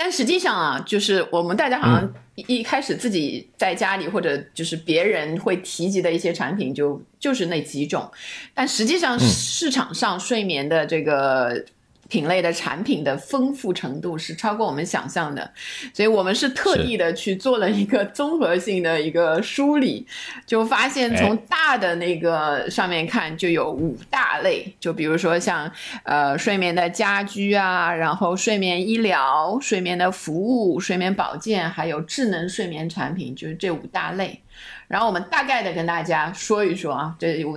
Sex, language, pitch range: female, Chinese, 170-230 Hz